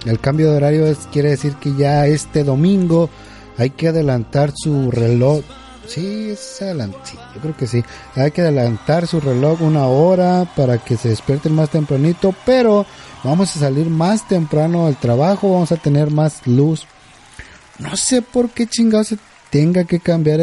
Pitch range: 135-190 Hz